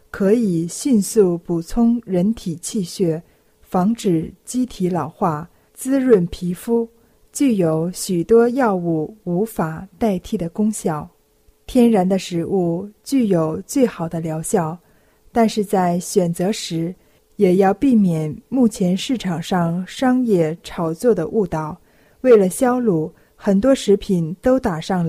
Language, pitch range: Chinese, 175-230 Hz